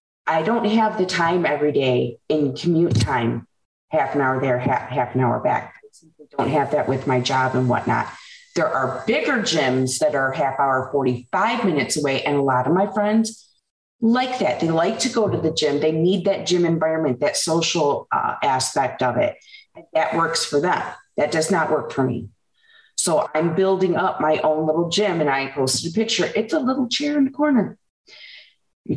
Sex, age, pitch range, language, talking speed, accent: female, 30-49, 150-210 Hz, English, 205 wpm, American